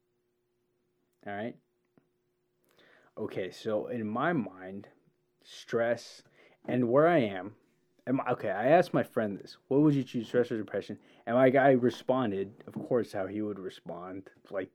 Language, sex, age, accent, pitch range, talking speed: English, male, 20-39, American, 100-135 Hz, 155 wpm